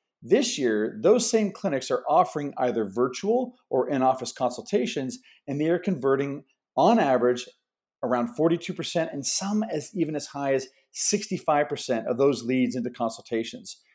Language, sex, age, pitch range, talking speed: English, male, 40-59, 135-185 Hz, 140 wpm